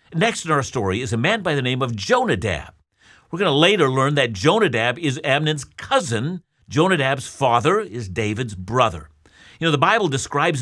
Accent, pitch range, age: American, 115-155 Hz, 50-69